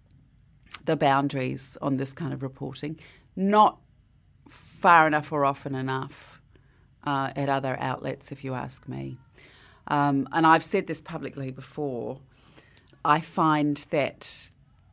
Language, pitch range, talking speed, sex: English, 130-155 Hz, 125 wpm, female